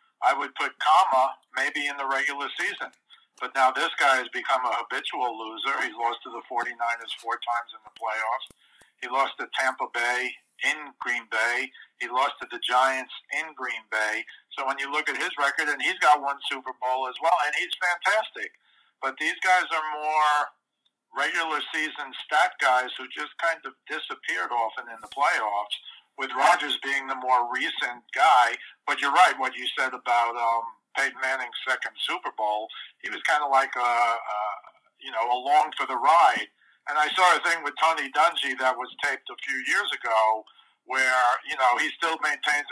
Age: 50-69